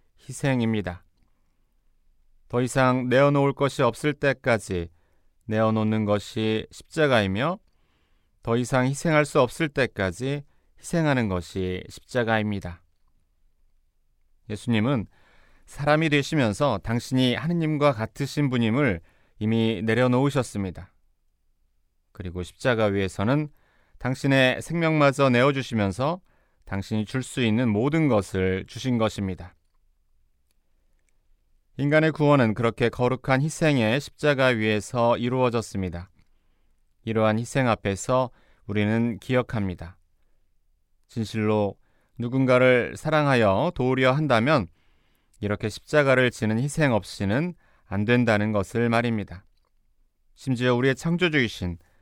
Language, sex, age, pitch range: Korean, male, 30-49, 95-130 Hz